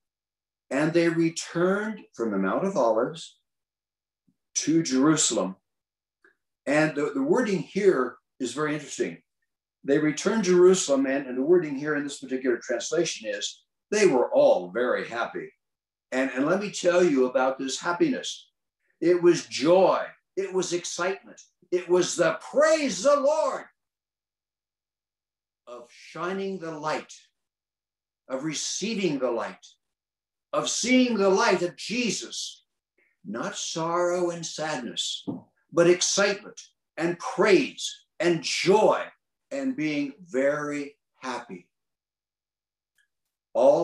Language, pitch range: English, 135-195 Hz